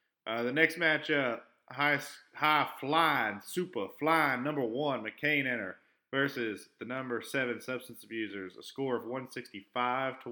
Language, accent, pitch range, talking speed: English, American, 120-140 Hz, 130 wpm